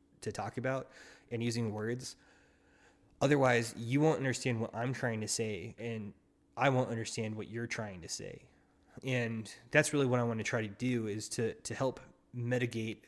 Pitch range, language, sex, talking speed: 110-130 Hz, English, male, 180 wpm